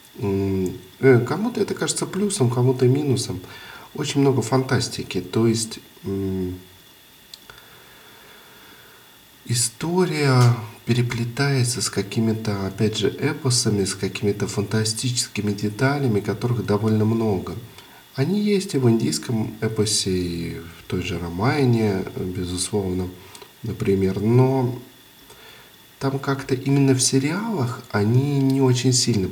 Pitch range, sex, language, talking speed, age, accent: 95-125 Hz, male, Russian, 95 wpm, 40-59, native